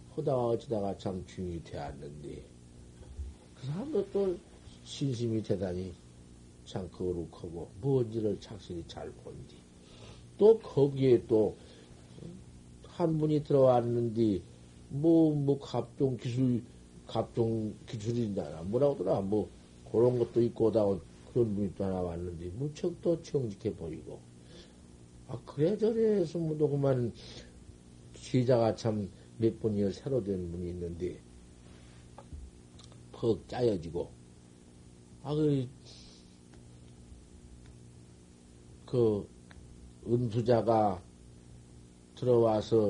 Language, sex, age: Korean, male, 50-69